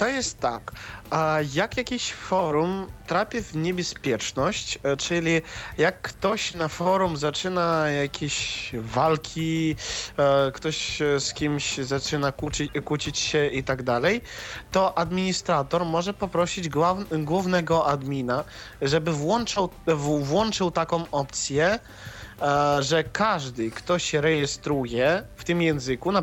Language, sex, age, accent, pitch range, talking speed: Polish, male, 20-39, native, 140-175 Hz, 105 wpm